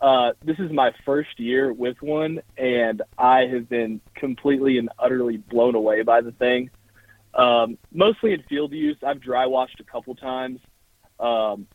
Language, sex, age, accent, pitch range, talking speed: English, male, 20-39, American, 115-135 Hz, 160 wpm